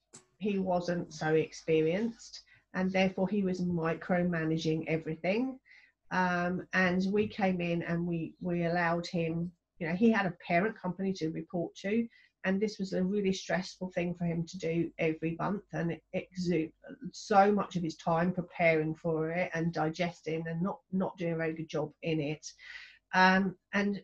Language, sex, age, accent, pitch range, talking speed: English, female, 40-59, British, 165-195 Hz, 170 wpm